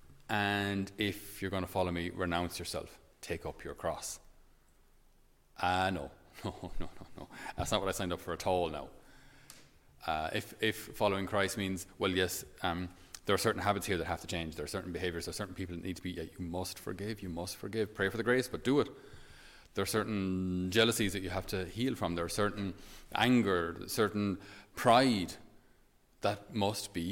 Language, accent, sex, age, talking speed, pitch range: English, Irish, male, 30-49, 205 wpm, 90-105 Hz